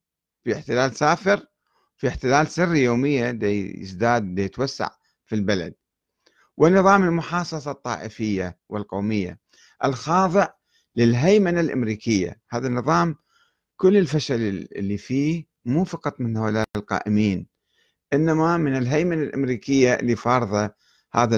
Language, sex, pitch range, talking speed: Arabic, male, 105-155 Hz, 105 wpm